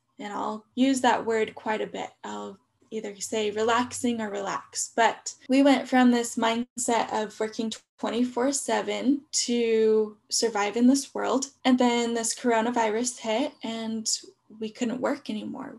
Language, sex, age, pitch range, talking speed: English, female, 10-29, 215-250 Hz, 145 wpm